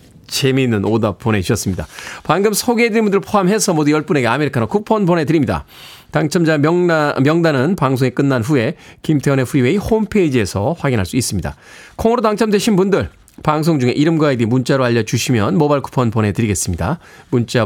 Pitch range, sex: 120-200 Hz, male